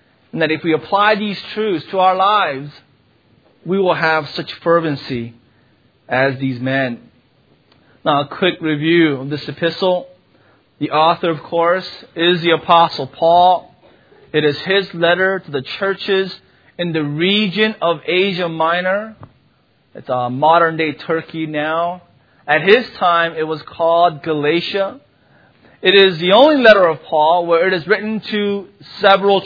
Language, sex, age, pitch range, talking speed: English, male, 30-49, 155-190 Hz, 145 wpm